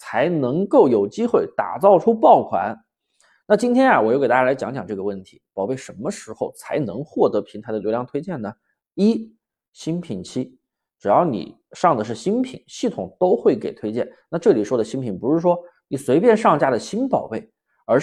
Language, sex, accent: Chinese, male, native